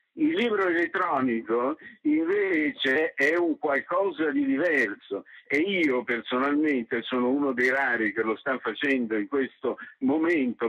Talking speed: 130 wpm